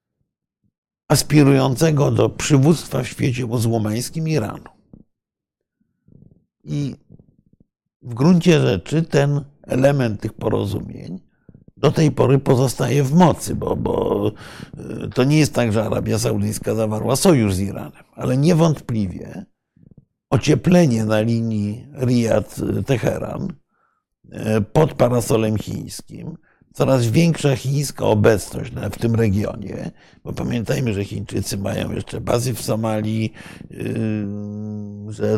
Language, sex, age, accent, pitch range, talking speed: Polish, male, 60-79, native, 110-140 Hz, 105 wpm